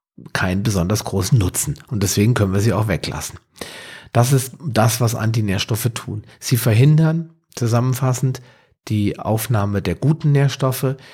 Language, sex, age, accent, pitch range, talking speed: German, male, 40-59, German, 100-130 Hz, 135 wpm